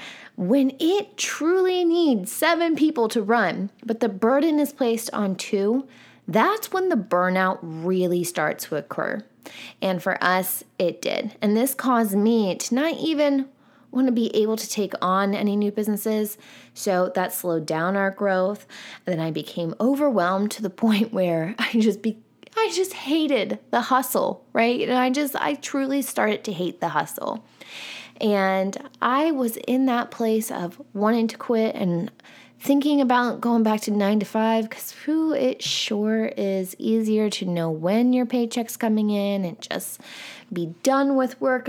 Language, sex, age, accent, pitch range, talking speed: English, female, 20-39, American, 195-270 Hz, 165 wpm